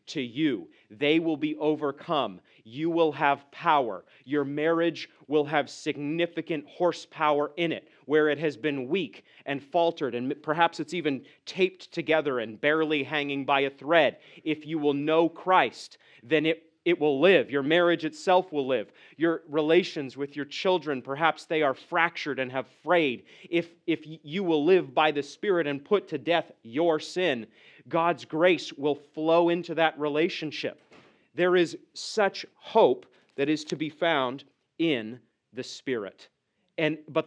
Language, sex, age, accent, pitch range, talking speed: English, male, 30-49, American, 140-165 Hz, 160 wpm